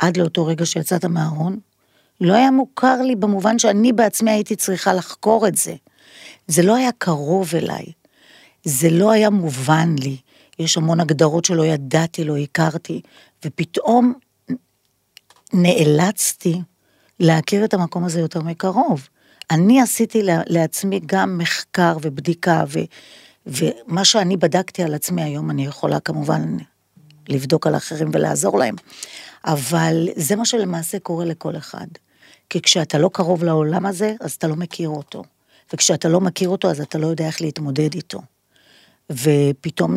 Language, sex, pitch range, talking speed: Hebrew, female, 155-190 Hz, 140 wpm